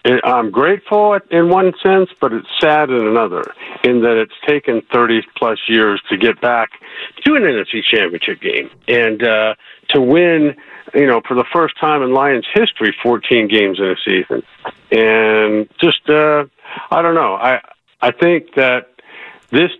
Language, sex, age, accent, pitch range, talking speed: English, male, 50-69, American, 105-150 Hz, 165 wpm